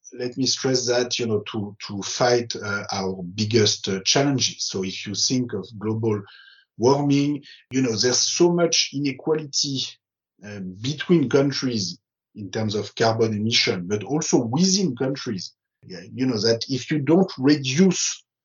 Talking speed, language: 155 wpm, English